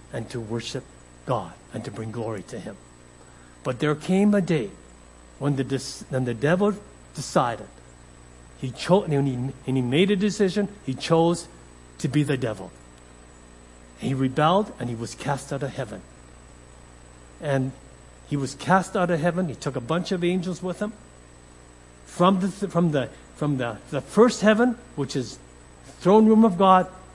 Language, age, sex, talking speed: English, 60-79, male, 165 wpm